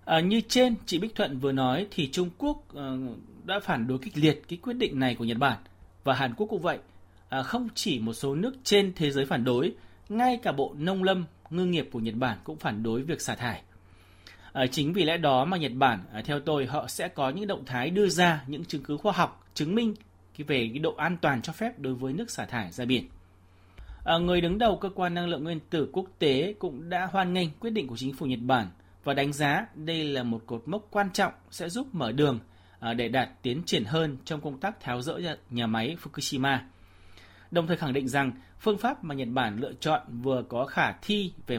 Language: Vietnamese